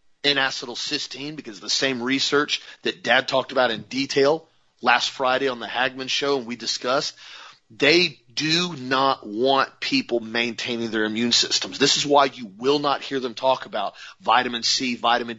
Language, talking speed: English, 170 wpm